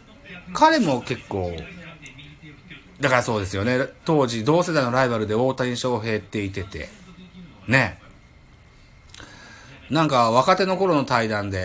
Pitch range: 100-165 Hz